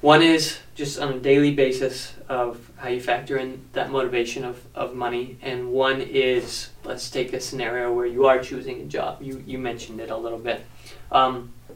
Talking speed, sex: 195 wpm, male